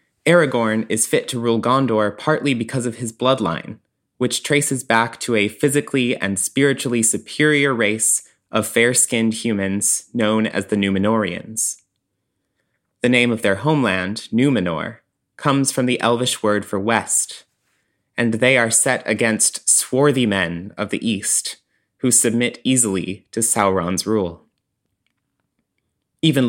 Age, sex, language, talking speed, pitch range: 20-39, male, English, 130 wpm, 110-135 Hz